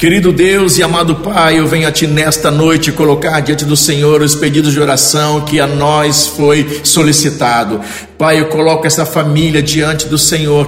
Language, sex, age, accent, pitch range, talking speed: Portuguese, male, 50-69, Brazilian, 145-160 Hz, 180 wpm